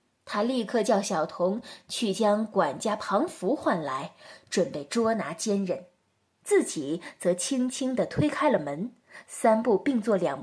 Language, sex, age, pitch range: Chinese, female, 20-39, 195-295 Hz